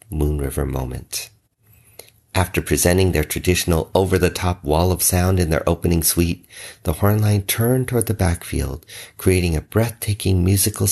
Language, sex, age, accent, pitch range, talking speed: English, male, 50-69, American, 80-105 Hz, 145 wpm